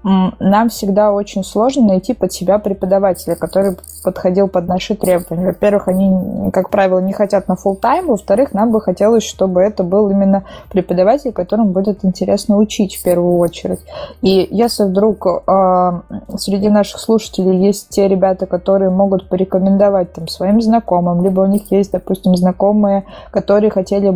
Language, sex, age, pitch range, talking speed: Russian, female, 20-39, 185-210 Hz, 150 wpm